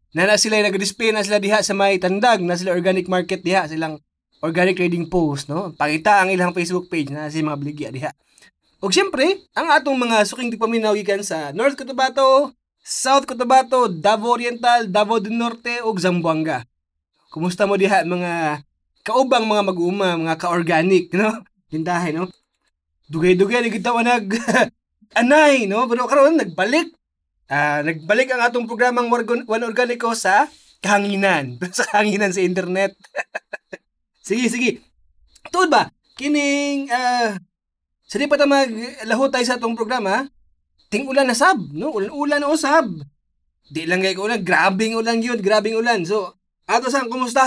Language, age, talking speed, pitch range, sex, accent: Filipino, 20-39, 155 wpm, 175-245 Hz, male, native